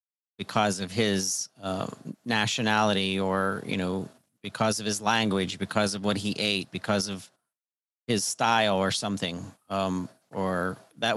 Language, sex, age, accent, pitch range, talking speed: English, male, 40-59, American, 100-115 Hz, 140 wpm